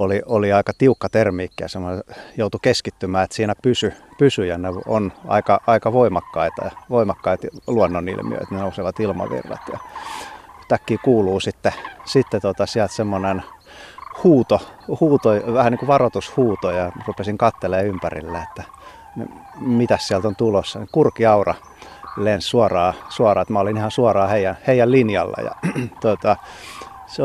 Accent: native